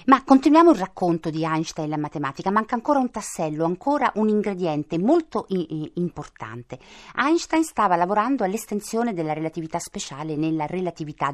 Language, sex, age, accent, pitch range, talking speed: Italian, female, 50-69, native, 150-215 Hz, 145 wpm